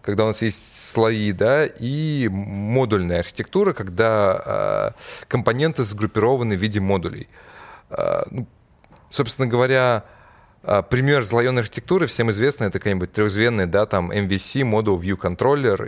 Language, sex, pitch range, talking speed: Russian, male, 95-120 Hz, 130 wpm